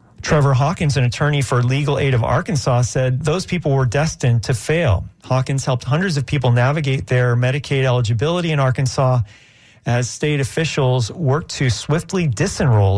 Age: 40-59